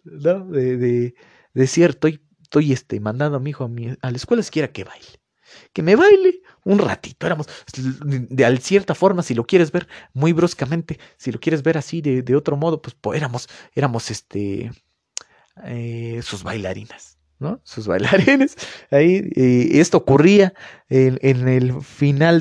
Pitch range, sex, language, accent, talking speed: 125-165 Hz, male, Spanish, Mexican, 170 wpm